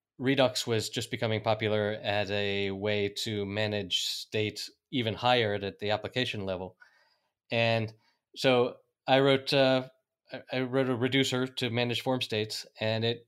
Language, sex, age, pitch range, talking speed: English, male, 20-39, 110-125 Hz, 145 wpm